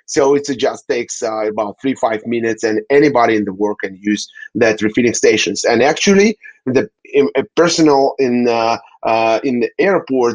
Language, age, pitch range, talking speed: English, 30-49, 110-145 Hz, 185 wpm